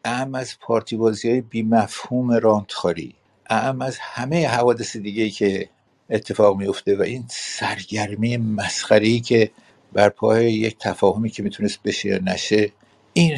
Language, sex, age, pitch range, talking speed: Persian, male, 60-79, 100-120 Hz, 130 wpm